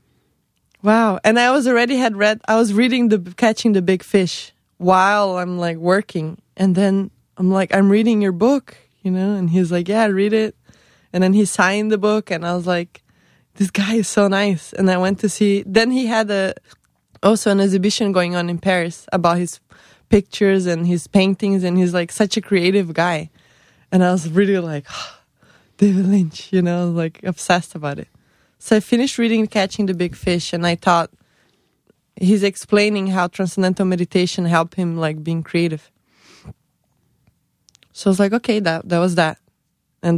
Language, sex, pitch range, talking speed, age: English, female, 175-210 Hz, 185 wpm, 20-39